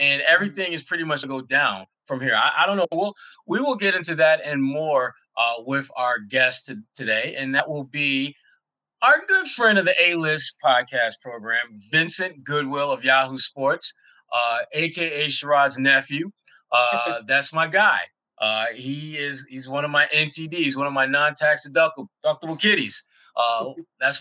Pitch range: 135-175 Hz